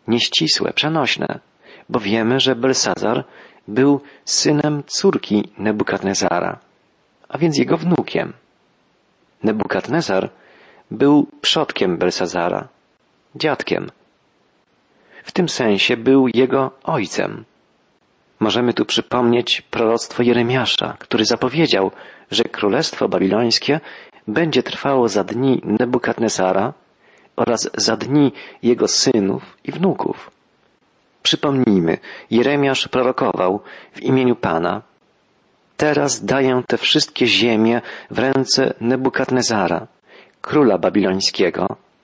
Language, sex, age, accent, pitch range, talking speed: Polish, male, 40-59, native, 110-135 Hz, 90 wpm